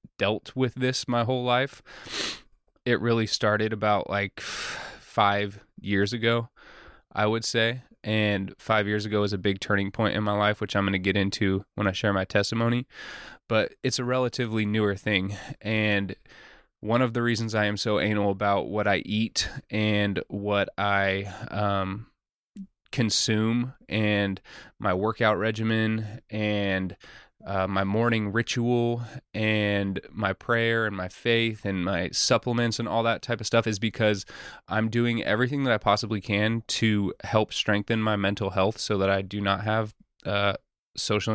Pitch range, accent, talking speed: 100-115 Hz, American, 160 wpm